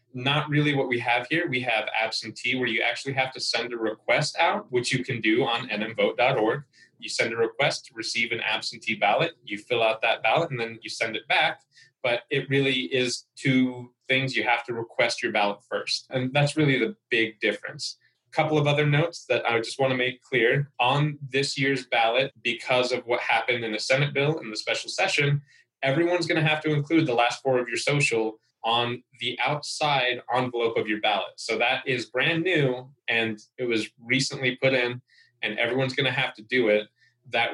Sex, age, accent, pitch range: male, 20-39, American, 115-140 Hz